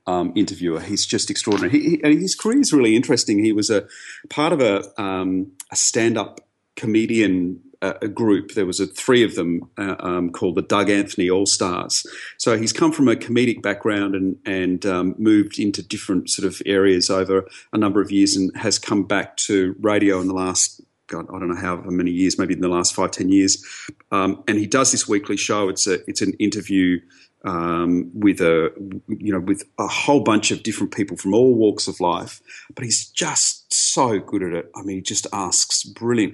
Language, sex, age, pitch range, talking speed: English, male, 40-59, 90-105 Hz, 200 wpm